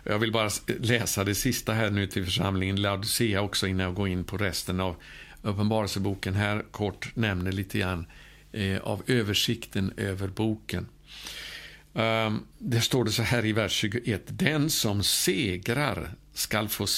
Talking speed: 150 wpm